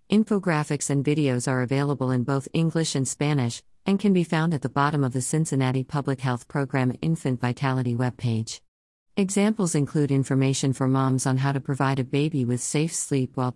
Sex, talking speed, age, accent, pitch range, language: female, 180 wpm, 50-69, American, 130-155 Hz, English